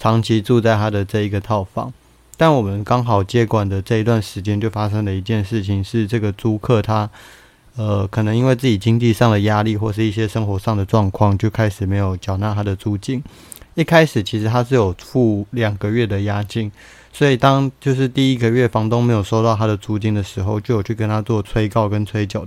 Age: 20-39